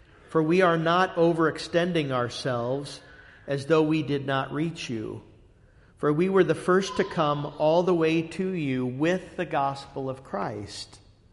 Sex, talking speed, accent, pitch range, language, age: male, 160 wpm, American, 120-155 Hz, English, 50-69